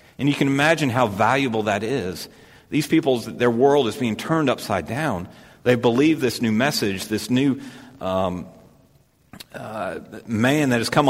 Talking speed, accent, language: 160 wpm, American, English